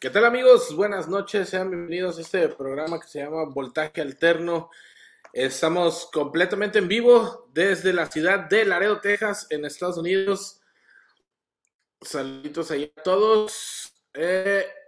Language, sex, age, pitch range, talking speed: Spanish, male, 20-39, 150-200 Hz, 130 wpm